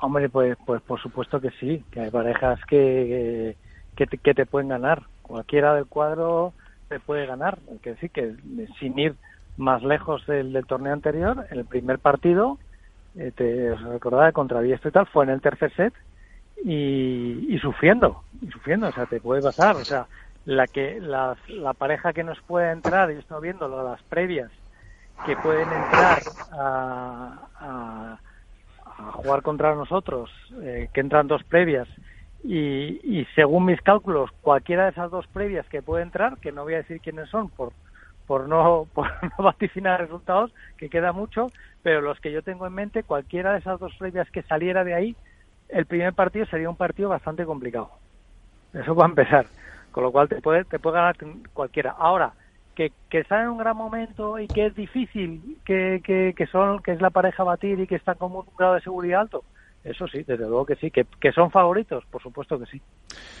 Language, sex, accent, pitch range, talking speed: Spanish, male, Spanish, 130-185 Hz, 190 wpm